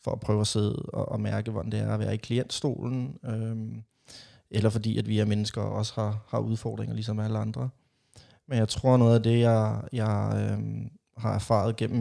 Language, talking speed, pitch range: Danish, 205 wpm, 110-125 Hz